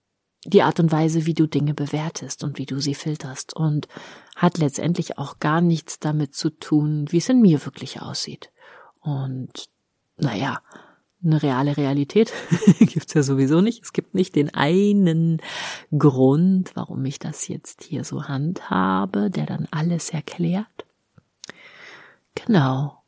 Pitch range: 150-180 Hz